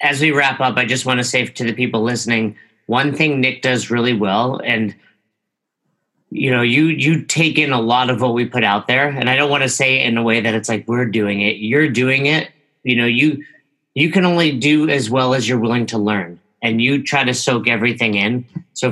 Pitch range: 115-135 Hz